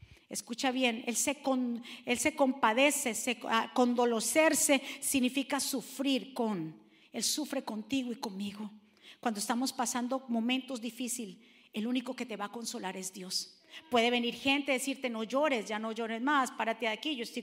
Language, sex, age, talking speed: Spanish, female, 40-59, 160 wpm